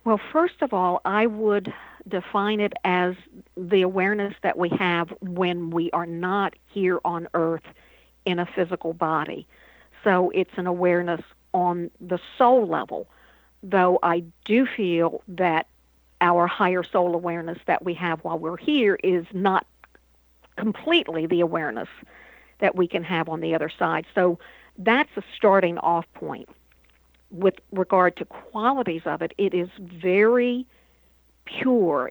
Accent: American